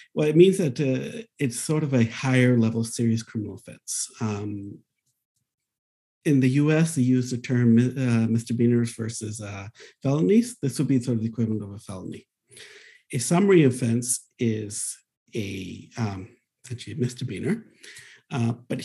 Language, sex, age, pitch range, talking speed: English, male, 50-69, 115-145 Hz, 155 wpm